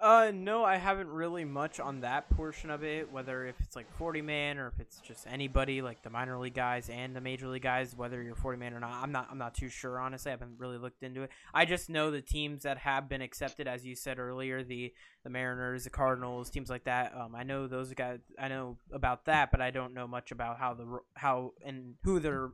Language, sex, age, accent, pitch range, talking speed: English, male, 20-39, American, 125-145 Hz, 250 wpm